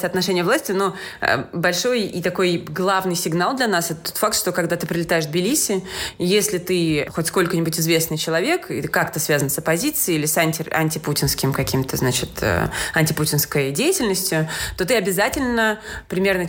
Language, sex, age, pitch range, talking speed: Russian, female, 20-39, 165-225 Hz, 155 wpm